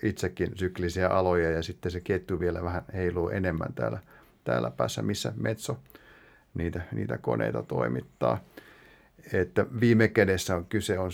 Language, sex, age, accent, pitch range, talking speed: Finnish, male, 50-69, native, 90-105 Hz, 140 wpm